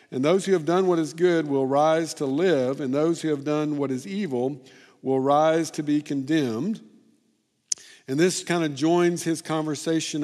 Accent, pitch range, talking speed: American, 130-170 Hz, 190 wpm